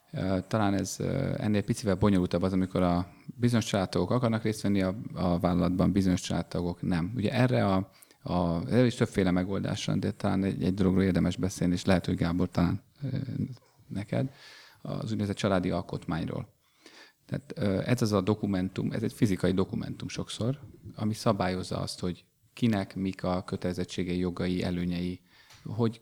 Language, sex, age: Hungarian, male, 30-49